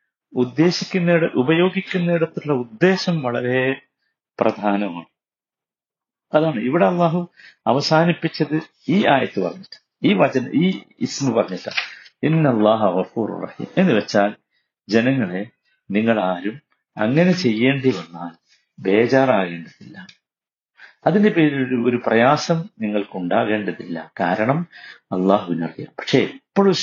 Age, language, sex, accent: 50-69, Malayalam, male, native